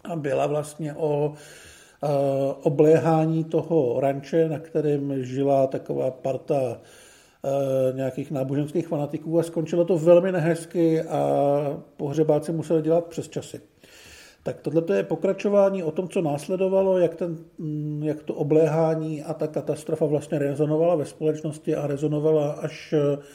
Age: 50-69